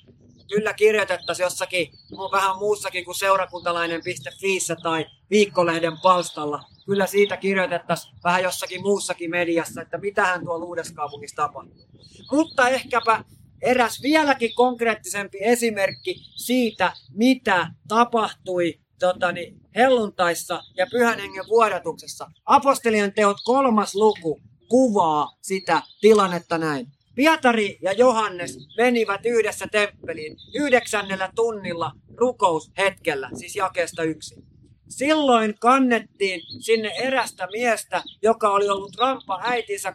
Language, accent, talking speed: Finnish, native, 105 wpm